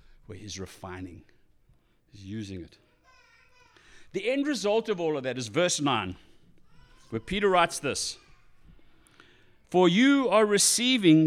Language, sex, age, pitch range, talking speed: English, male, 60-79, 145-205 Hz, 130 wpm